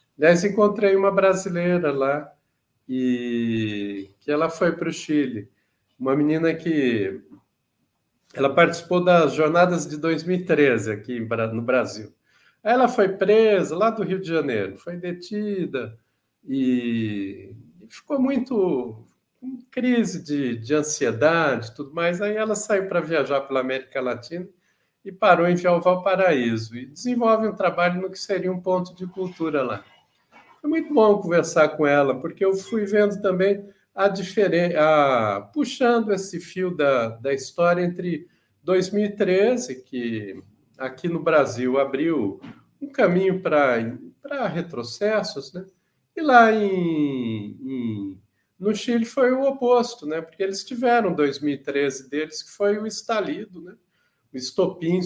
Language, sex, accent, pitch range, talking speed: Portuguese, male, Brazilian, 140-200 Hz, 135 wpm